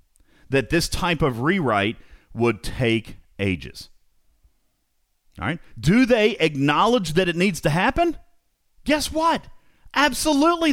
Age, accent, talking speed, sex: 40-59, American, 115 wpm, male